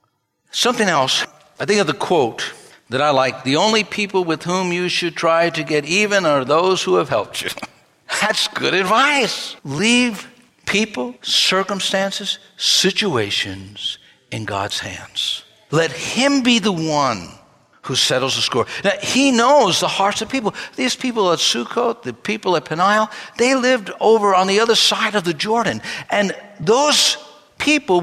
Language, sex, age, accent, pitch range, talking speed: English, male, 60-79, American, 170-235 Hz, 160 wpm